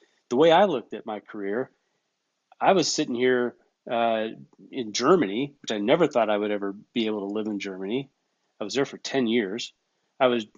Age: 40-59